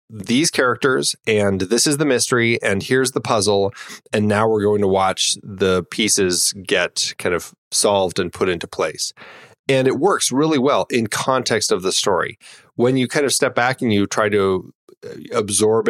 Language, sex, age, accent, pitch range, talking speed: English, male, 30-49, American, 100-145 Hz, 180 wpm